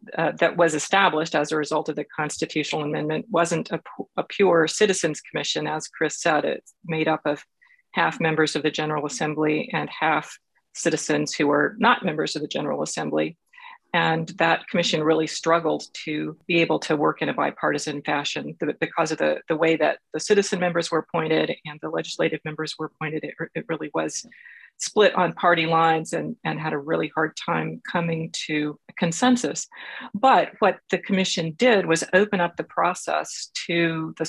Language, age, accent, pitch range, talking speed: English, 40-59, American, 155-185 Hz, 185 wpm